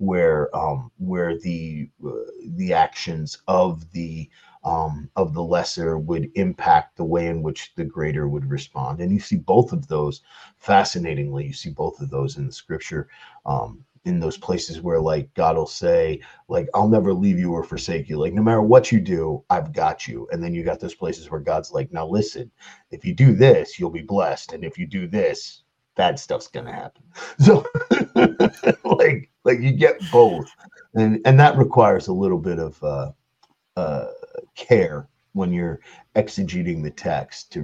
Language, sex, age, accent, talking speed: English, male, 30-49, American, 180 wpm